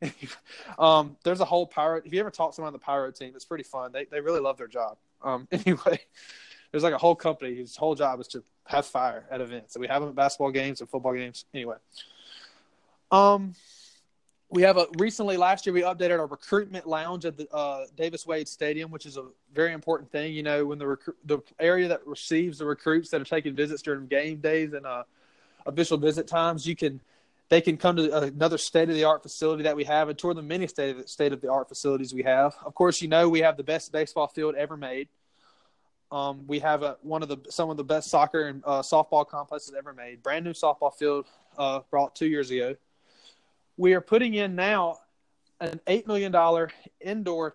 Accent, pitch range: American, 140-170 Hz